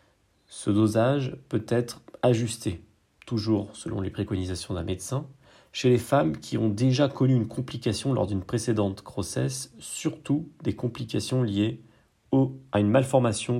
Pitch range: 100-130 Hz